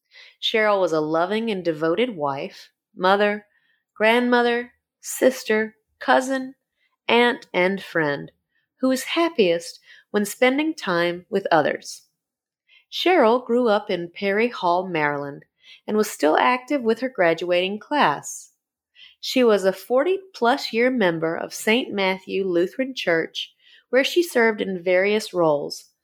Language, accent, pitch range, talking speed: English, American, 175-255 Hz, 125 wpm